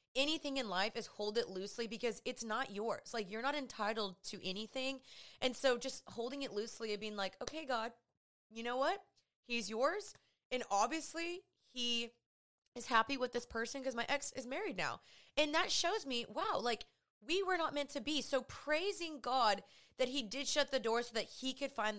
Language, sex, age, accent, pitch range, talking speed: English, female, 20-39, American, 215-270 Hz, 200 wpm